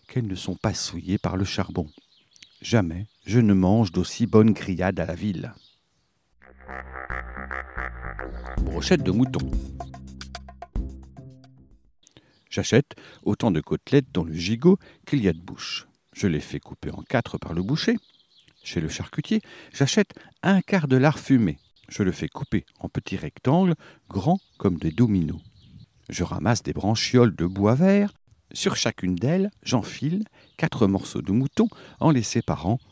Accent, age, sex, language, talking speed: French, 60-79, male, French, 145 wpm